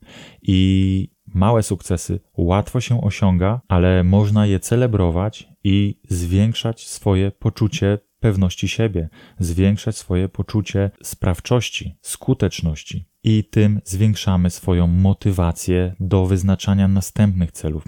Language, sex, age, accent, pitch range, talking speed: Polish, male, 20-39, native, 90-105 Hz, 100 wpm